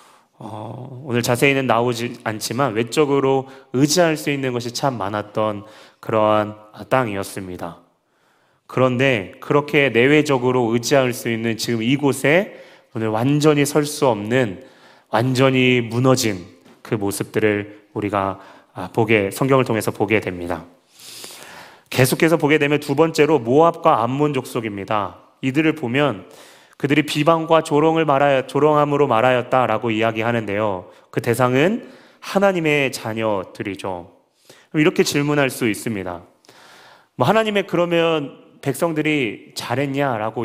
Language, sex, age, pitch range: Korean, male, 30-49, 110-145 Hz